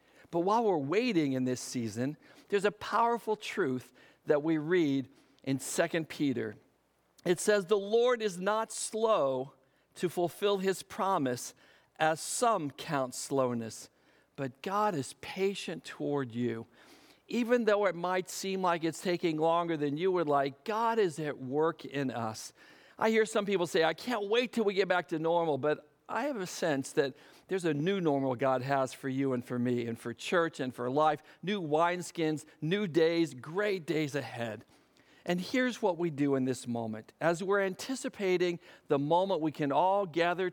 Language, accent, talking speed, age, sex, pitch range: English, American, 175 wpm, 50-69, male, 135-190 Hz